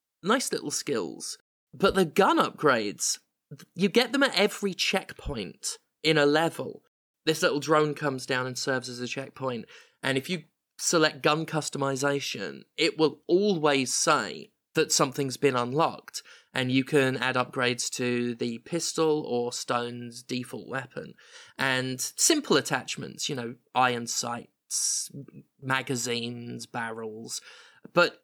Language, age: English, 20-39